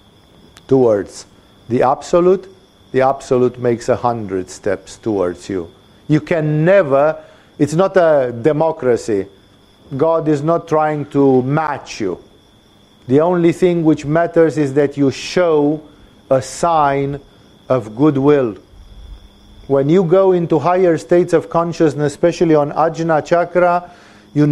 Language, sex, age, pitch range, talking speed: English, male, 50-69, 130-180 Hz, 125 wpm